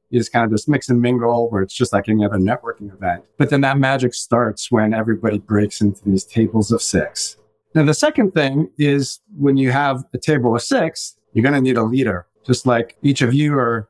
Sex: male